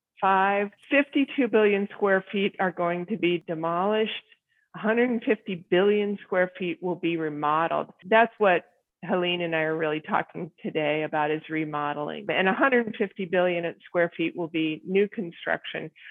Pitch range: 175-215 Hz